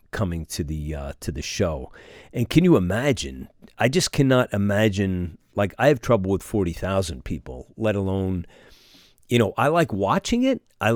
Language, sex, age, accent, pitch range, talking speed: English, male, 40-59, American, 95-130 Hz, 170 wpm